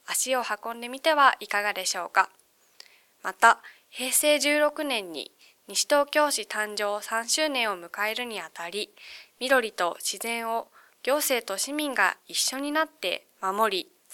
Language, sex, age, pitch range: Japanese, female, 20-39, 200-280 Hz